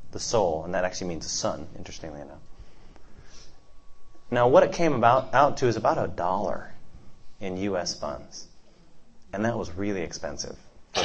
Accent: American